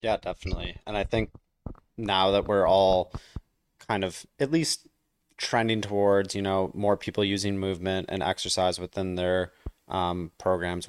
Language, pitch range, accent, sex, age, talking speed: English, 90-100 Hz, American, male, 20-39, 150 wpm